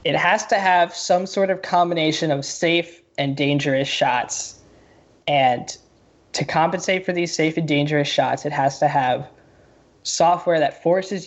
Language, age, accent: English, 10-29, American